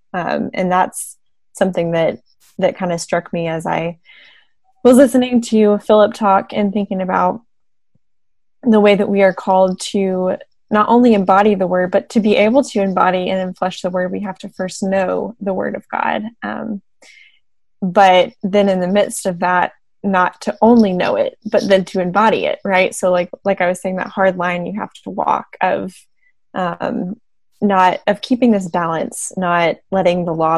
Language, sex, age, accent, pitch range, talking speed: English, female, 10-29, American, 170-205 Hz, 185 wpm